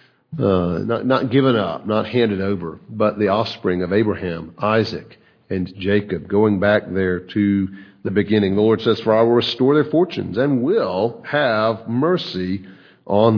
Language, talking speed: English, 160 wpm